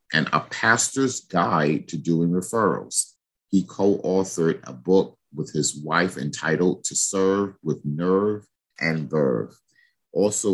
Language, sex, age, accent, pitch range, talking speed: English, male, 50-69, American, 75-95 Hz, 125 wpm